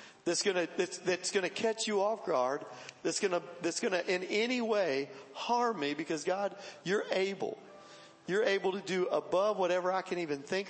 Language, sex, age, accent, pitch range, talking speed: English, male, 50-69, American, 180-220 Hz, 180 wpm